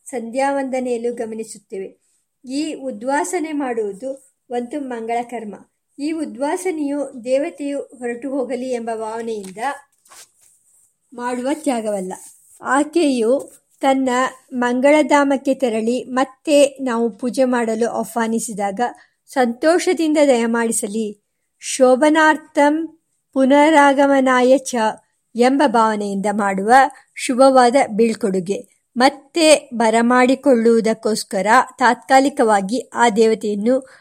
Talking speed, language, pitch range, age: 75 wpm, Kannada, 230-275 Hz, 50-69